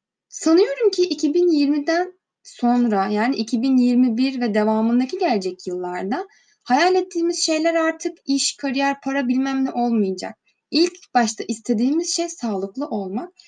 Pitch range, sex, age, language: 210-315 Hz, female, 10-29, Turkish